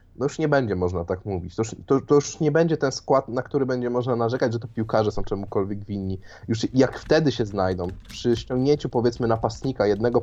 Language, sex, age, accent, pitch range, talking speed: Polish, male, 20-39, native, 100-120 Hz, 215 wpm